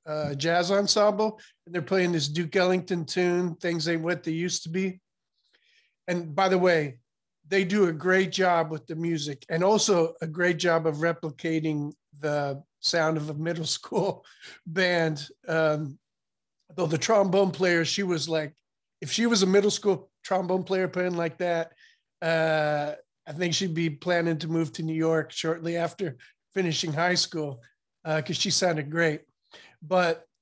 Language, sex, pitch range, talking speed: English, male, 155-180 Hz, 165 wpm